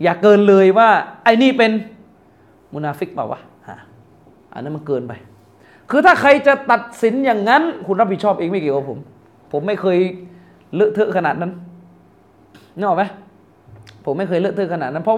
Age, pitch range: 20-39, 130-195 Hz